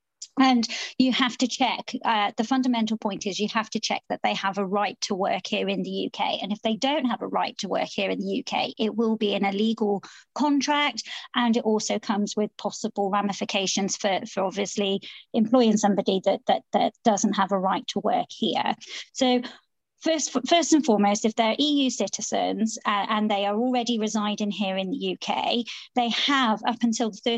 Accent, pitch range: British, 205-250 Hz